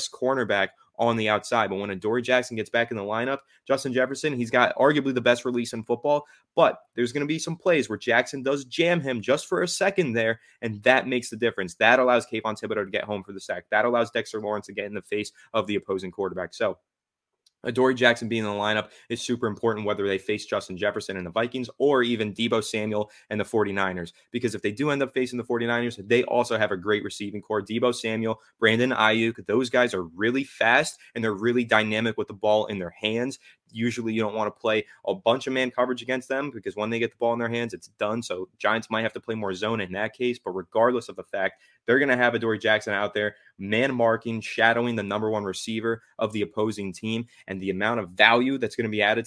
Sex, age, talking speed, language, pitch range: male, 20-39, 240 wpm, English, 105-120 Hz